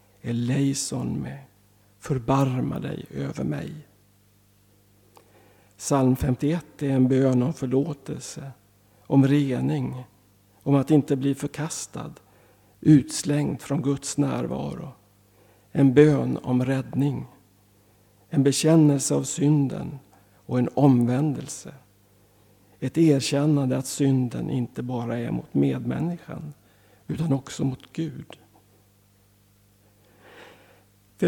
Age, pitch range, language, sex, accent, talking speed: 60-79, 100-145 Hz, Swedish, male, native, 95 wpm